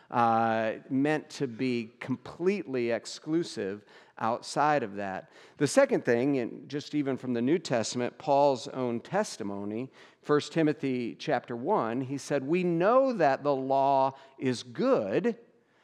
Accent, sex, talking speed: American, male, 135 wpm